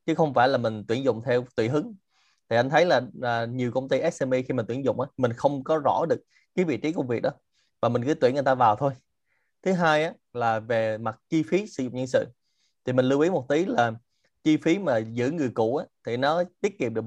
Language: Vietnamese